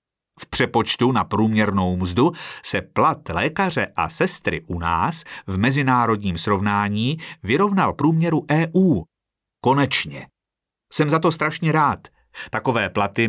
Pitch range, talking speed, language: 100-165 Hz, 115 wpm, Czech